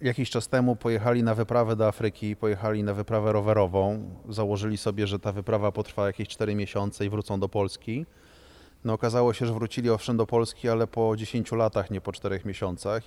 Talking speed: 190 wpm